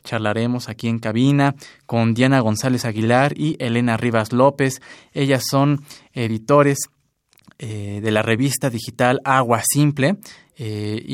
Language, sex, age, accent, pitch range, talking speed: Spanish, male, 20-39, Mexican, 115-140 Hz, 125 wpm